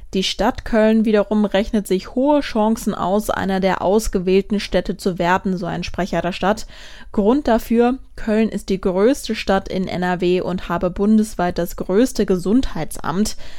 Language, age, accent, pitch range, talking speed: German, 20-39, German, 175-215 Hz, 155 wpm